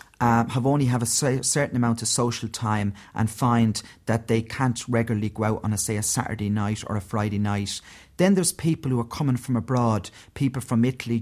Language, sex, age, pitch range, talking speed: English, male, 30-49, 110-125 Hz, 210 wpm